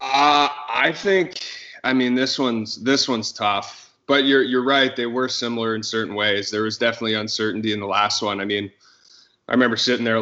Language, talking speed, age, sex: English, 200 wpm, 20-39, male